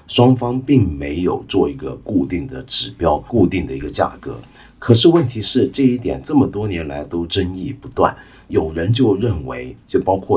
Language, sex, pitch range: Chinese, male, 85-120 Hz